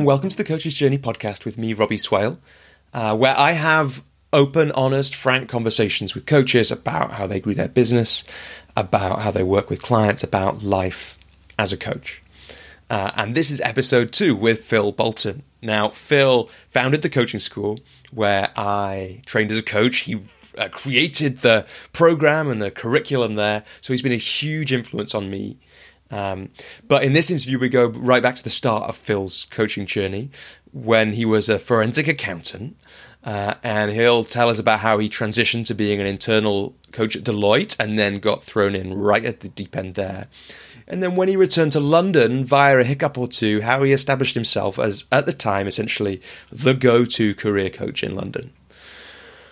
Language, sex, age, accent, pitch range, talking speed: English, male, 30-49, British, 105-135 Hz, 185 wpm